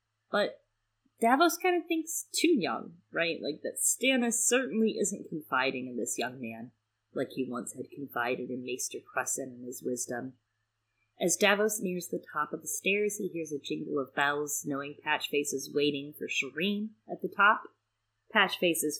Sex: female